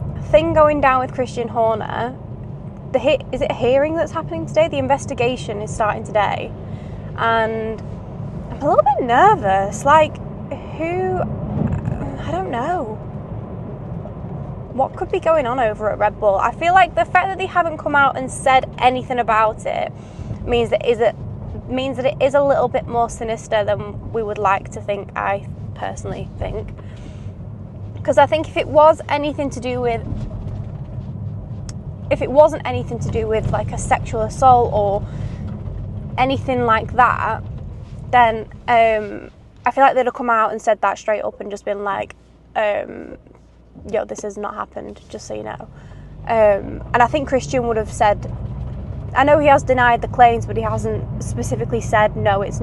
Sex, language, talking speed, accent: female, English, 175 wpm, British